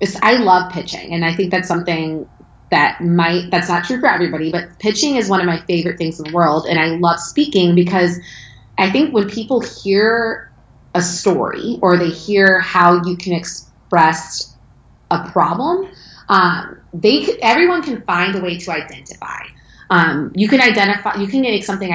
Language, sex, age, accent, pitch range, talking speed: English, female, 20-39, American, 165-200 Hz, 175 wpm